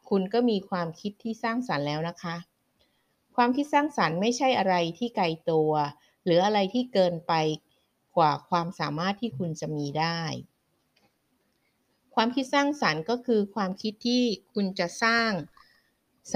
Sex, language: female, Thai